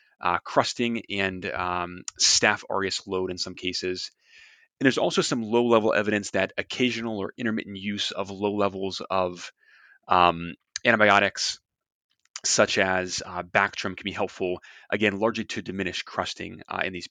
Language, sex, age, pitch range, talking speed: English, male, 30-49, 95-120 Hz, 145 wpm